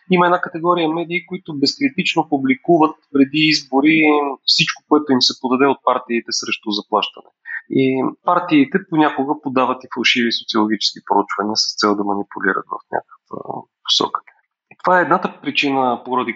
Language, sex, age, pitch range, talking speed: English, male, 30-49, 125-160 Hz, 140 wpm